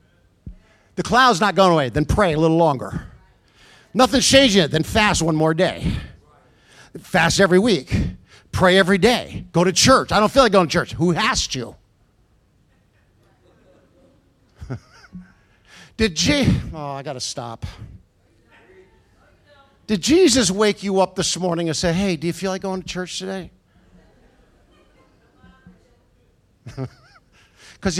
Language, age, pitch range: English, 50-69, 120-190 Hz